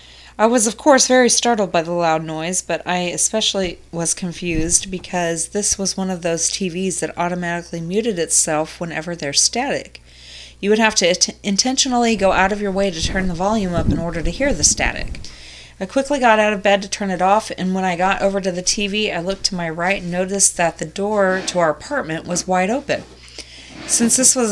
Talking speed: 215 wpm